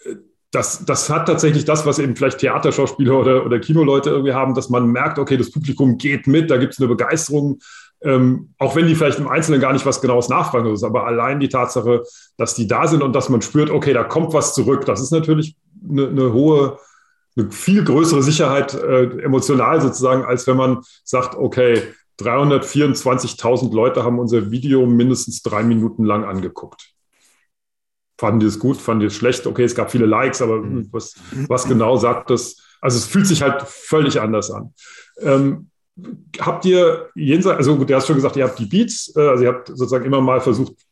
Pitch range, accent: 125-150 Hz, German